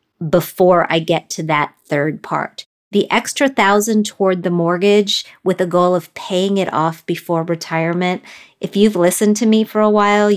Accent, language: American, English